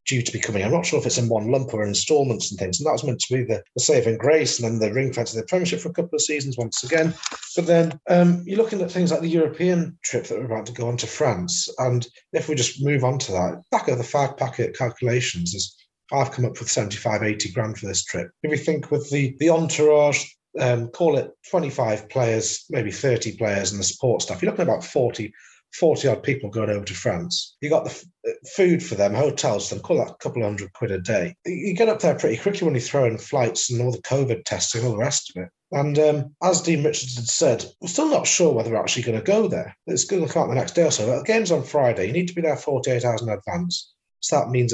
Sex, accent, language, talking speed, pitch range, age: male, British, English, 265 wpm, 110-160 Hz, 40-59